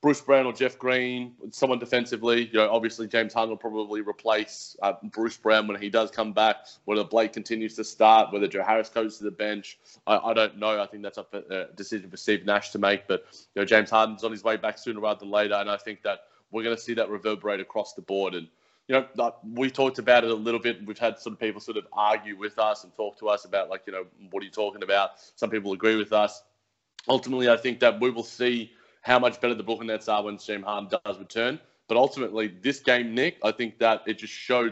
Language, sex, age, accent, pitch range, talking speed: English, male, 20-39, Australian, 105-115 Hz, 245 wpm